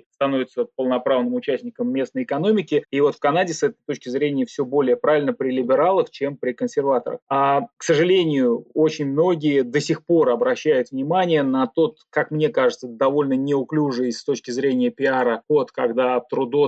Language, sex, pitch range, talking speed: Russian, male, 125-155 Hz, 160 wpm